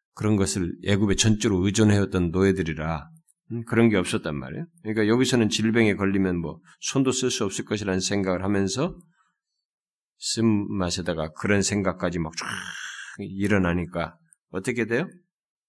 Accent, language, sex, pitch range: native, Korean, male, 85-115 Hz